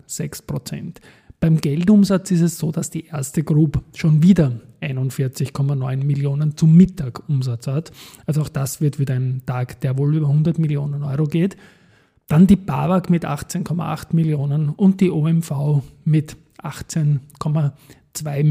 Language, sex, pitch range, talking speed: German, male, 140-165 Hz, 135 wpm